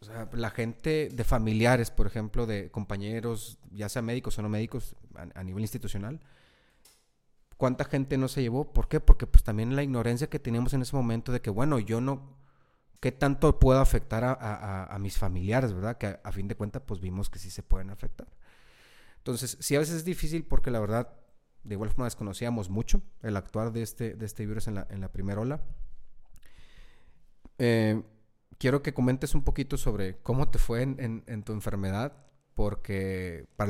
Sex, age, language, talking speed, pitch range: male, 30-49, Spanish, 195 wpm, 100-125 Hz